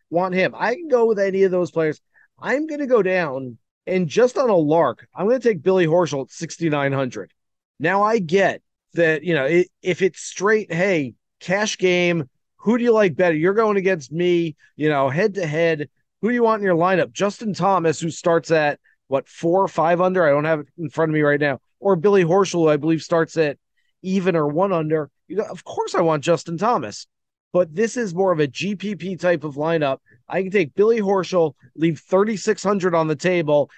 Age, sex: 30-49, male